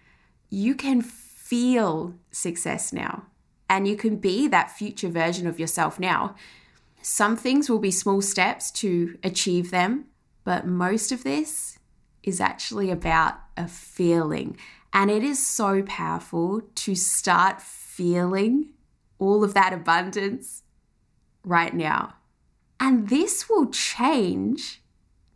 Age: 20-39